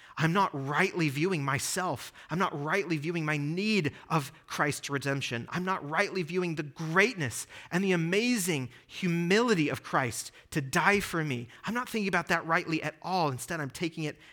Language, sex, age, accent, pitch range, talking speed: English, male, 30-49, American, 130-175 Hz, 175 wpm